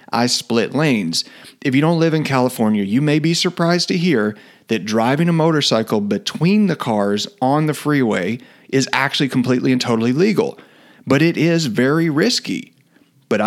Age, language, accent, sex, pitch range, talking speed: 40-59, English, American, male, 115-150 Hz, 165 wpm